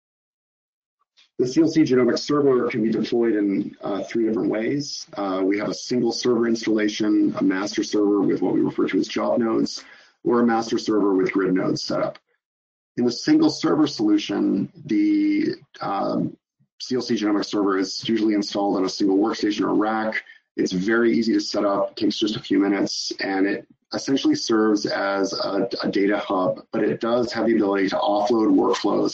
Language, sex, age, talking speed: English, male, 30-49, 180 wpm